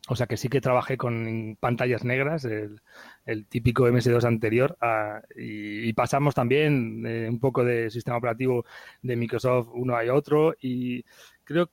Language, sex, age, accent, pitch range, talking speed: Spanish, male, 30-49, Spanish, 115-145 Hz, 165 wpm